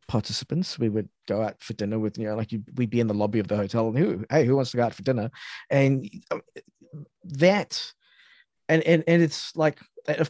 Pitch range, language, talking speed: 110-135 Hz, English, 220 wpm